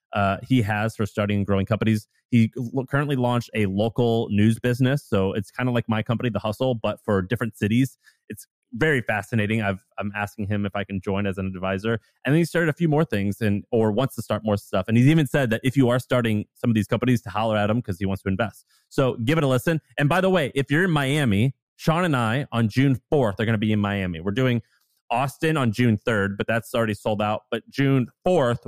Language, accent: English, American